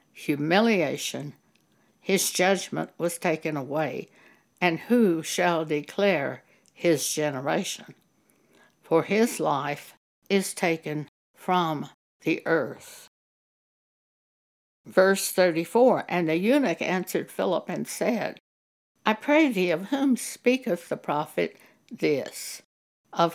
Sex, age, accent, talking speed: female, 60-79, American, 100 wpm